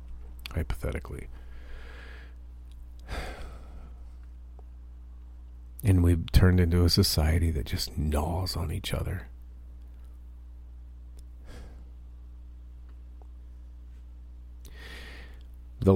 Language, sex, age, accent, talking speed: English, male, 40-59, American, 55 wpm